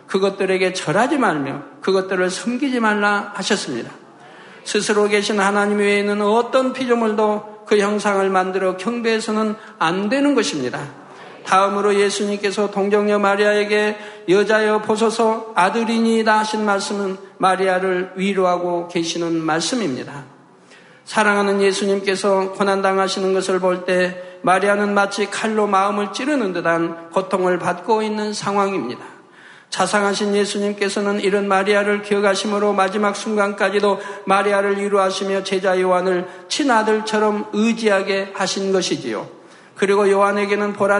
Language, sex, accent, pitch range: Korean, male, native, 190-210 Hz